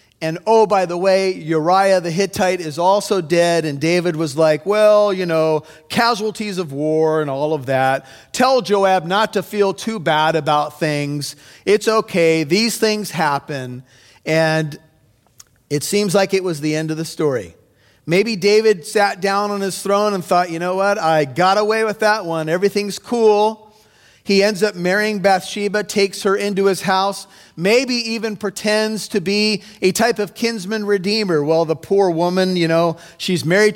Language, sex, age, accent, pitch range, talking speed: English, male, 40-59, American, 155-200 Hz, 175 wpm